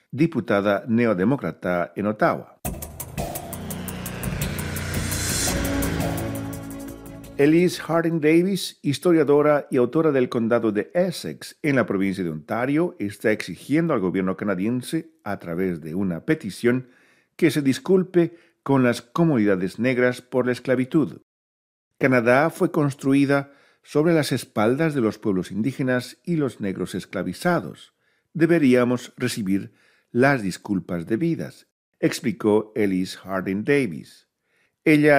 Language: Spanish